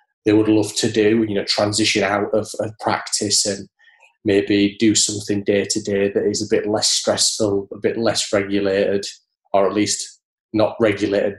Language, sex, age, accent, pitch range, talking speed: English, male, 20-39, British, 100-115 Hz, 180 wpm